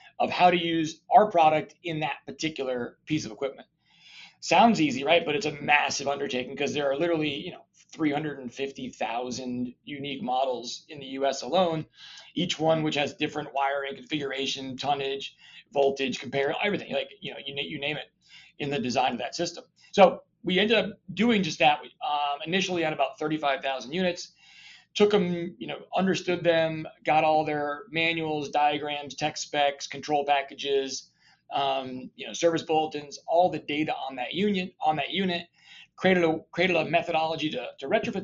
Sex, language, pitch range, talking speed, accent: male, English, 140-170 Hz, 170 wpm, American